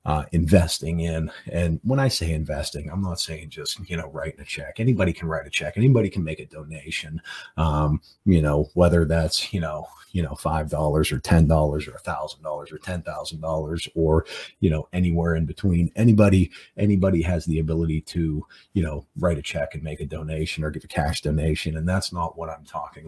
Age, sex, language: 40-59, male, English